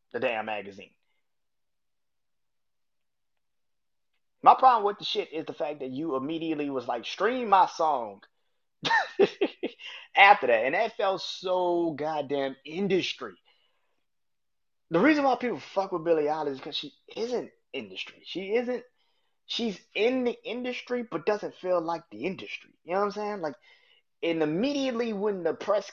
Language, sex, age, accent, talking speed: English, male, 20-39, American, 145 wpm